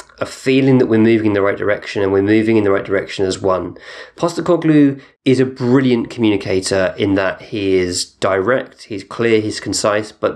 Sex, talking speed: male, 190 wpm